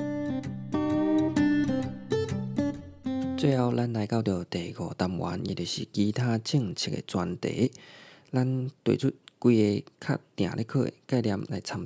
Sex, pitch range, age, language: male, 105-145 Hz, 20-39, Chinese